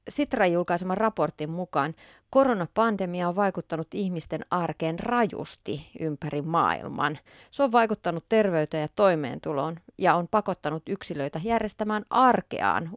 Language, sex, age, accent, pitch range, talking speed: Finnish, female, 30-49, native, 150-210 Hz, 110 wpm